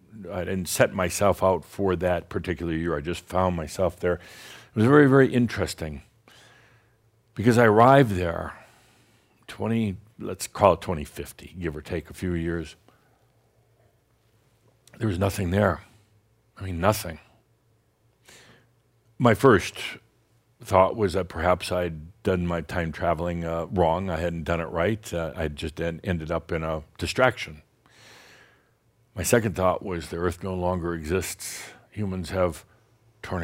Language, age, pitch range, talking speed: English, 60-79, 85-115 Hz, 145 wpm